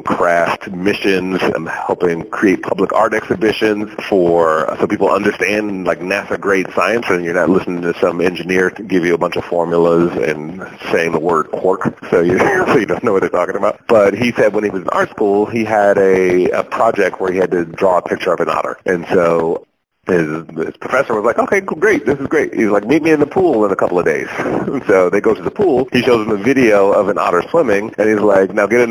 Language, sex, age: English, male, 30-49